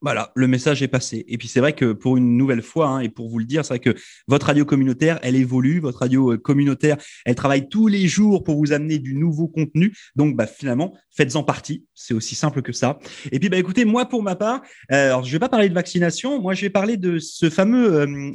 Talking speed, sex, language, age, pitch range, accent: 250 wpm, male, French, 30-49, 130-185 Hz, French